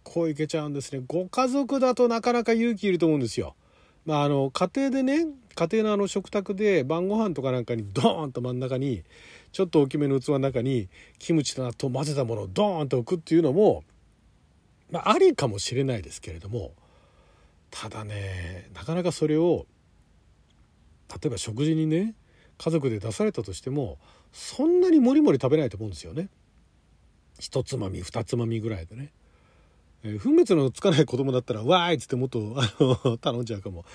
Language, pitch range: Japanese, 110-180 Hz